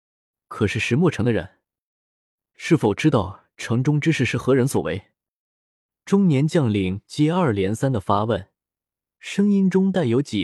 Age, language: 20-39, Chinese